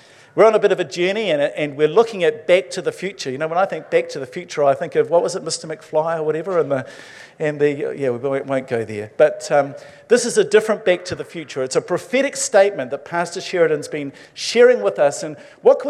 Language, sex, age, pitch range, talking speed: English, male, 50-69, 140-205 Hz, 255 wpm